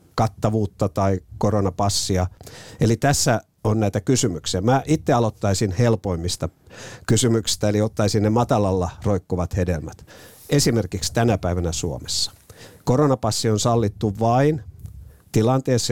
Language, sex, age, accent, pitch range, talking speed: Finnish, male, 50-69, native, 100-130 Hz, 105 wpm